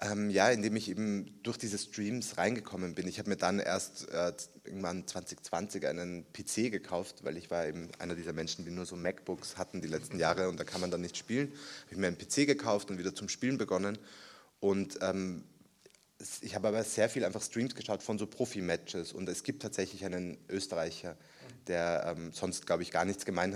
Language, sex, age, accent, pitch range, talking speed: German, male, 20-39, German, 90-105 Hz, 205 wpm